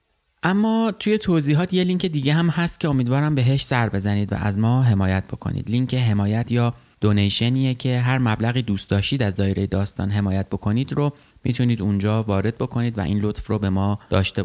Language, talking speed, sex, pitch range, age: Persian, 185 wpm, male, 100-135 Hz, 20-39